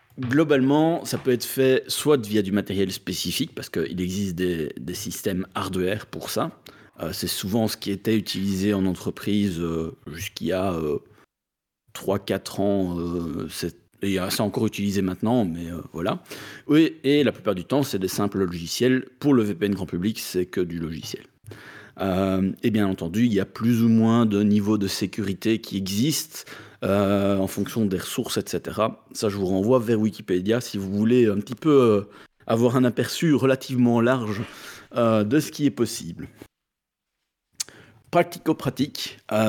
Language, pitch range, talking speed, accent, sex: French, 100-125 Hz, 175 wpm, French, male